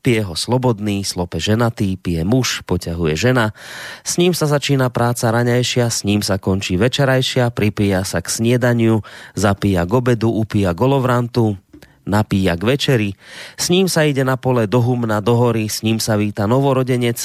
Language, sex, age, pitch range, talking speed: Slovak, male, 30-49, 105-130 Hz, 165 wpm